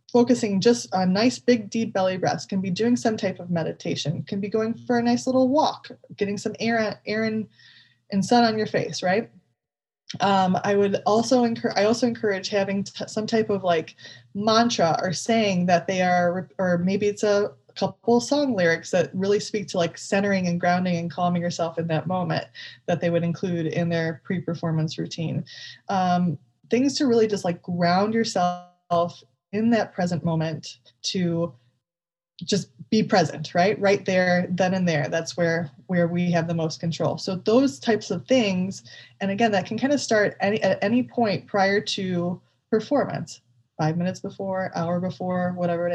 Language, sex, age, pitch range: English, female, 20-39, 170-215 Hz